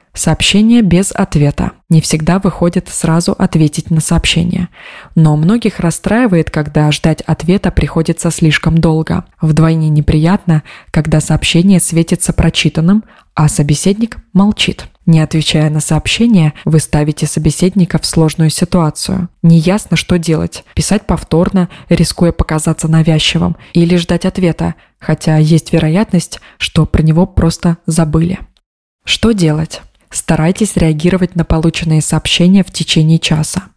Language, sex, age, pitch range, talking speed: Russian, female, 20-39, 155-185 Hz, 120 wpm